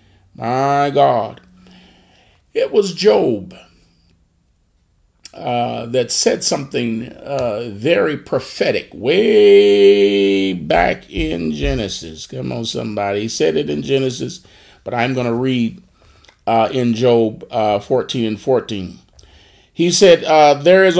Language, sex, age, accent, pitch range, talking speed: English, male, 40-59, American, 100-160 Hz, 110 wpm